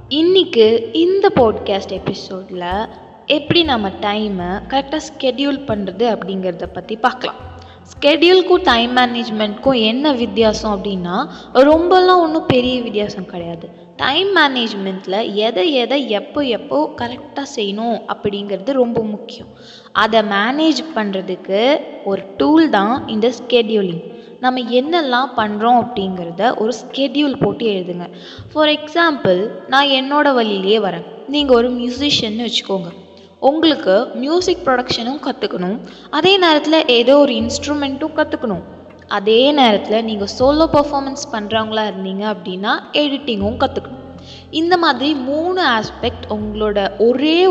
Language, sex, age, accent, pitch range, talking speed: Tamil, female, 20-39, native, 205-285 Hz, 110 wpm